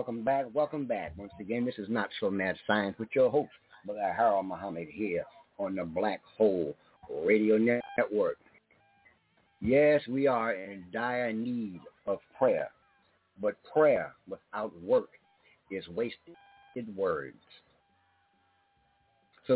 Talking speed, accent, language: 125 wpm, American, English